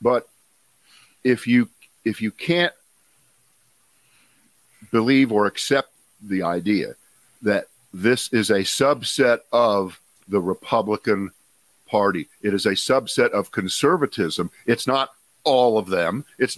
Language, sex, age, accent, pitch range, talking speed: English, male, 50-69, American, 105-130 Hz, 115 wpm